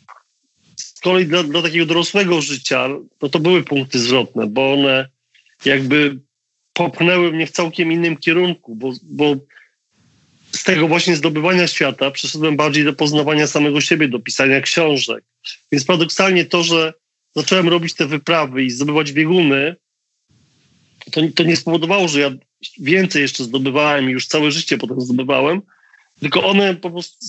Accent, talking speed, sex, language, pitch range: native, 145 wpm, male, Polish, 140-175 Hz